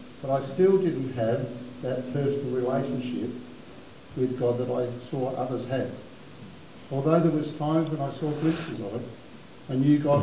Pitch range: 120-145 Hz